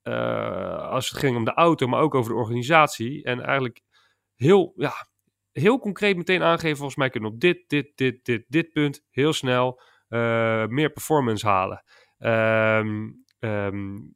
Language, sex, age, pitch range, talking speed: Dutch, male, 30-49, 120-155 Hz, 165 wpm